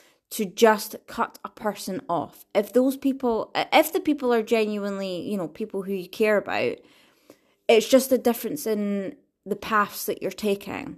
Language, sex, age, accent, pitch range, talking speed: English, female, 20-39, British, 195-245 Hz, 170 wpm